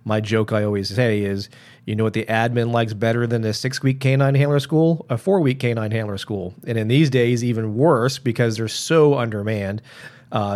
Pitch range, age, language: 110-130 Hz, 30-49, English